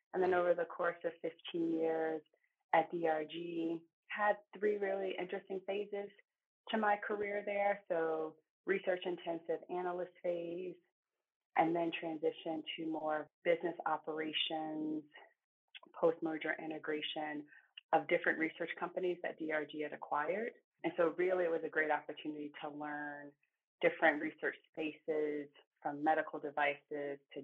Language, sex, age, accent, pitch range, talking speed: English, female, 30-49, American, 150-175 Hz, 130 wpm